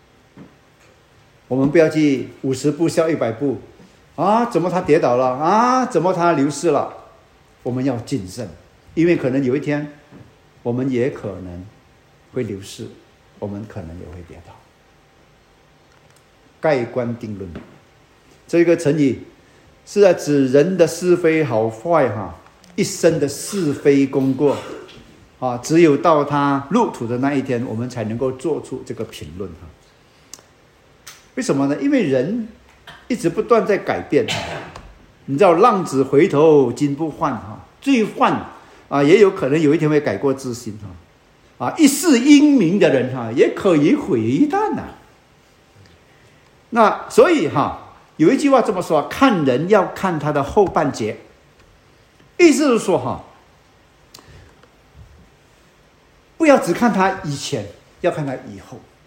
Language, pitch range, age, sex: Chinese, 125-180 Hz, 50-69, male